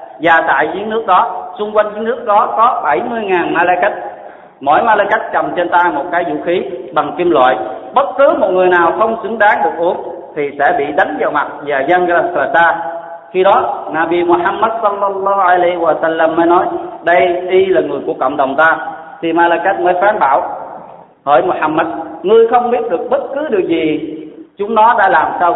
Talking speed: 190 wpm